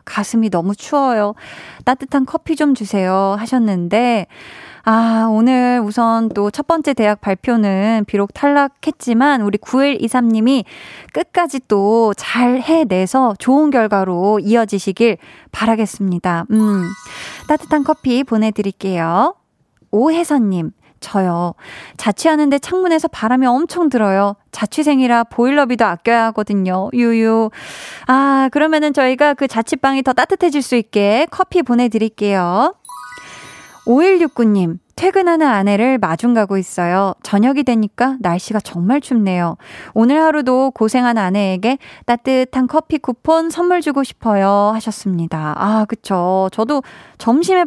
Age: 20-39